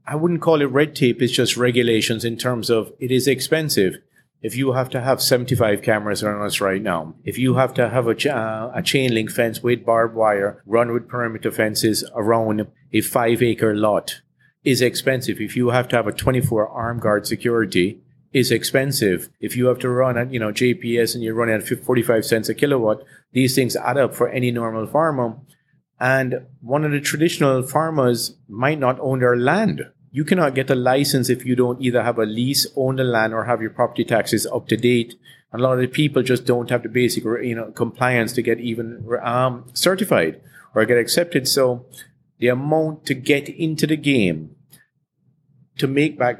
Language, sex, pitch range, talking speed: English, male, 115-130 Hz, 200 wpm